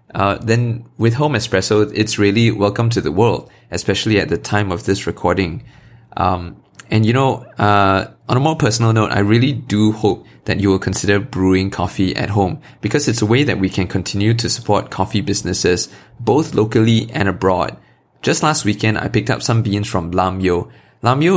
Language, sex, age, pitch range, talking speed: English, male, 20-39, 95-115 Hz, 190 wpm